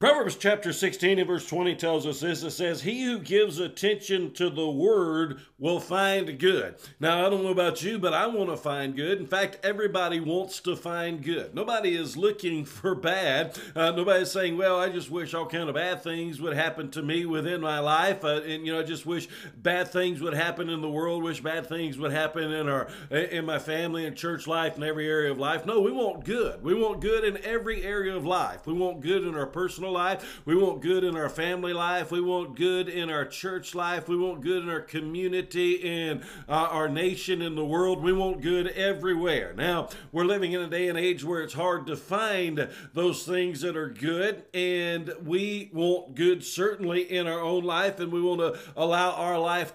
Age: 50-69